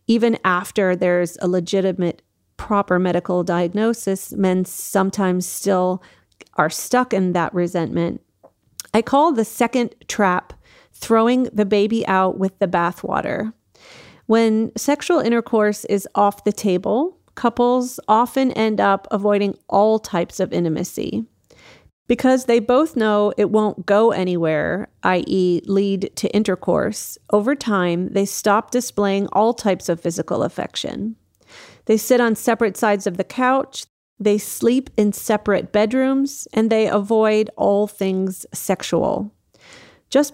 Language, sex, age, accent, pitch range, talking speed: English, female, 40-59, American, 190-230 Hz, 130 wpm